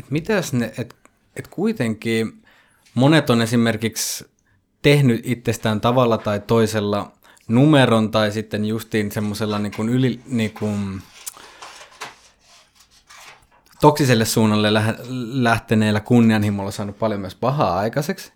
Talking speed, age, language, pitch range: 80 wpm, 20-39, Finnish, 105-120 Hz